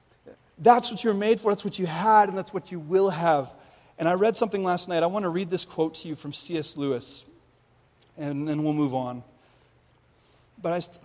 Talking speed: 225 wpm